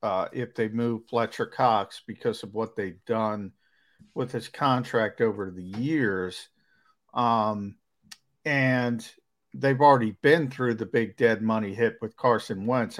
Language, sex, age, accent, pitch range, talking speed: English, male, 50-69, American, 110-130 Hz, 145 wpm